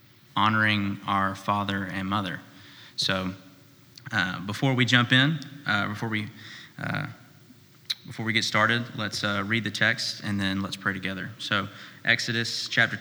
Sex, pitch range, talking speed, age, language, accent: male, 100-120 Hz, 150 wpm, 30-49, English, American